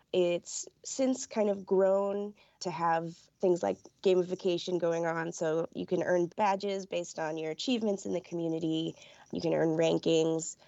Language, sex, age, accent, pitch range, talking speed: English, female, 20-39, American, 165-205 Hz, 155 wpm